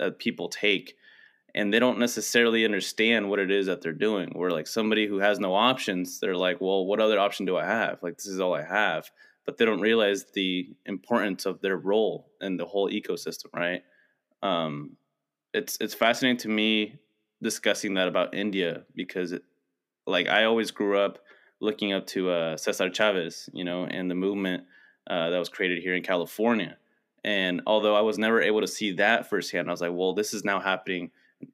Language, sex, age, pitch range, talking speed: English, male, 20-39, 95-110 Hz, 200 wpm